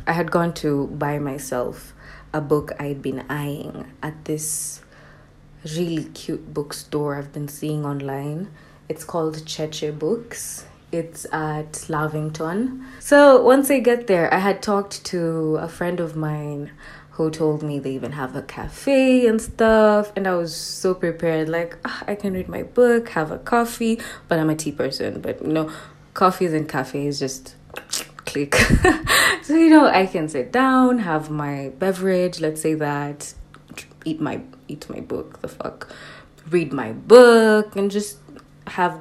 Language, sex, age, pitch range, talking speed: English, female, 20-39, 150-195 Hz, 160 wpm